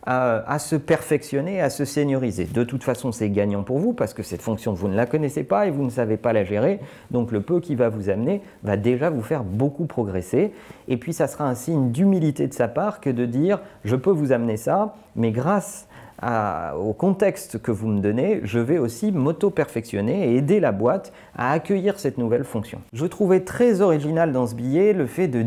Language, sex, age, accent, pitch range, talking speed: French, male, 40-59, French, 110-150 Hz, 215 wpm